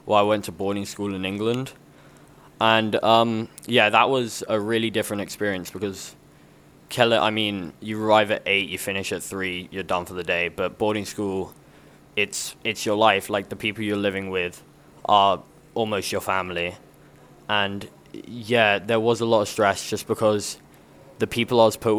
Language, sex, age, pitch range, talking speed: English, male, 10-29, 100-115 Hz, 180 wpm